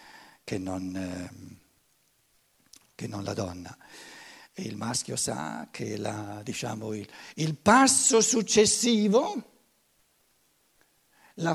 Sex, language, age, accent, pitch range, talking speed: male, Italian, 60-79, native, 160-265 Hz, 100 wpm